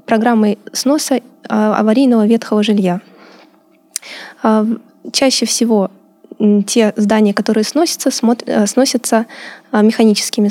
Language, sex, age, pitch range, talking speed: Russian, female, 10-29, 210-245 Hz, 75 wpm